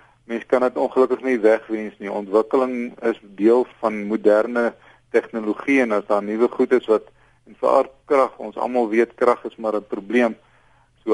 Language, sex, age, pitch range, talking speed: Dutch, male, 40-59, 110-125 Hz, 170 wpm